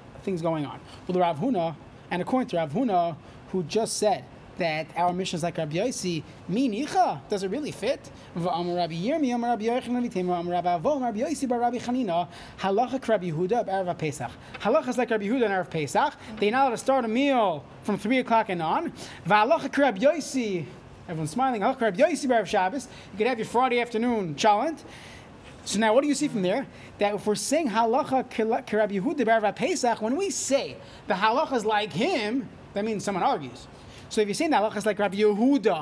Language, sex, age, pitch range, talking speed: English, male, 30-49, 185-250 Hz, 145 wpm